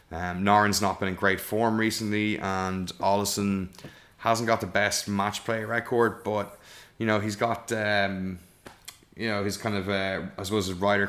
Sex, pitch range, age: male, 95-105 Hz, 20-39